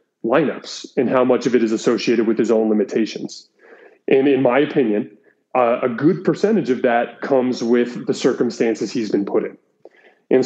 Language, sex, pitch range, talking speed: English, male, 115-135 Hz, 180 wpm